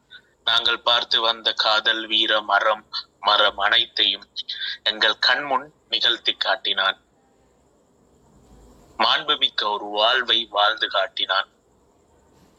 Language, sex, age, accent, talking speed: Tamil, male, 30-49, native, 80 wpm